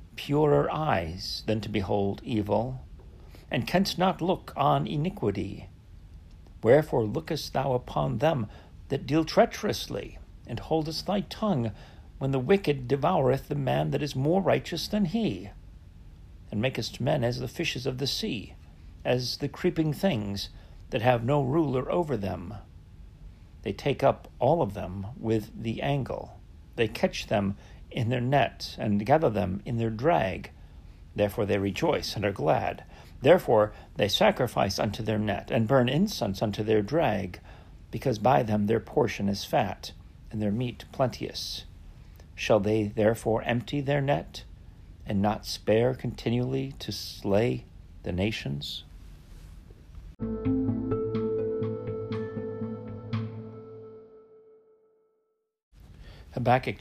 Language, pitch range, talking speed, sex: English, 95-130 Hz, 125 wpm, male